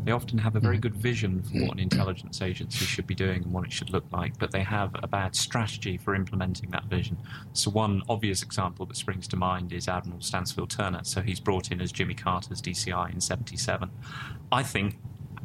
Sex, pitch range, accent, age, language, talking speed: male, 95-120 Hz, British, 30-49, English, 215 wpm